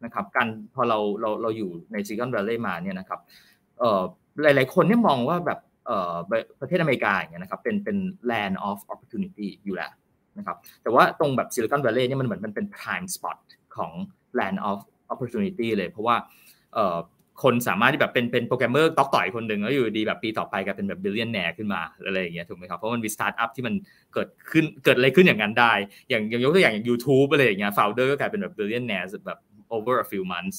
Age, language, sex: 20-39, Thai, male